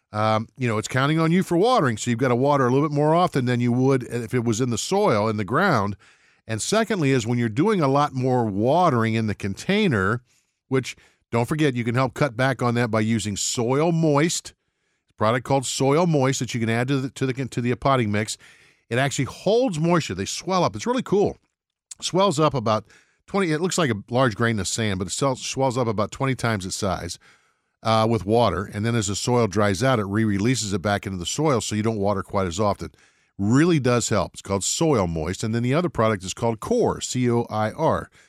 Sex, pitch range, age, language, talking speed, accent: male, 105-135 Hz, 50-69, English, 235 wpm, American